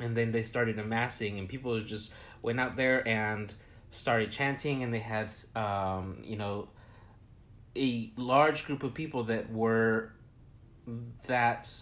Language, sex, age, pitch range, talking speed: English, male, 30-49, 105-125 Hz, 140 wpm